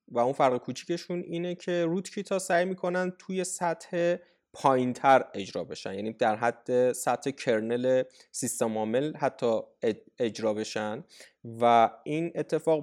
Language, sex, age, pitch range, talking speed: Persian, male, 20-39, 110-140 Hz, 125 wpm